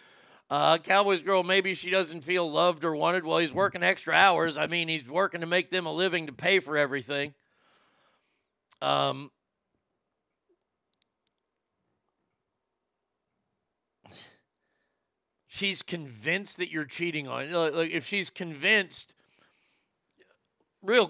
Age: 50-69